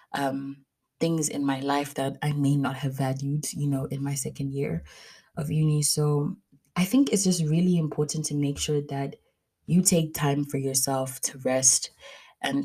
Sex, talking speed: female, 180 wpm